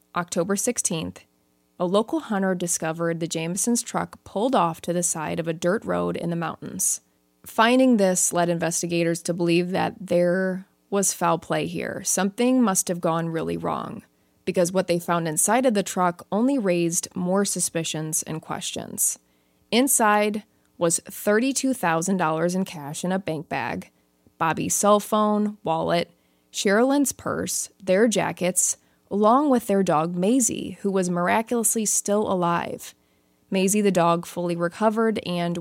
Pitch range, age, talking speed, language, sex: 165-200 Hz, 20-39, 145 wpm, English, female